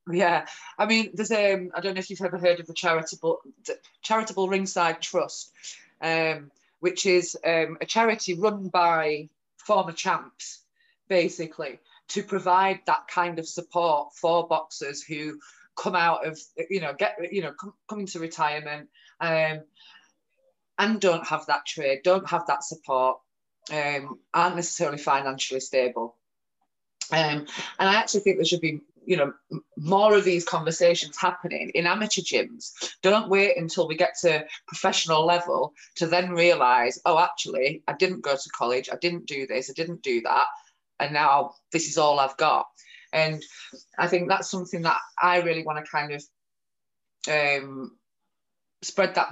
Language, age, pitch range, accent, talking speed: English, 20-39, 150-190 Hz, British, 160 wpm